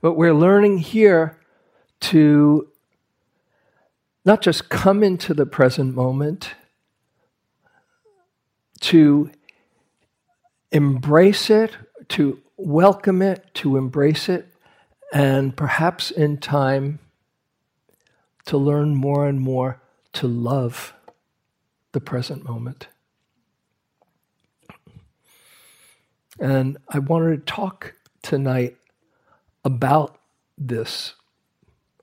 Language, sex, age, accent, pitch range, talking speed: English, male, 60-79, American, 130-160 Hz, 80 wpm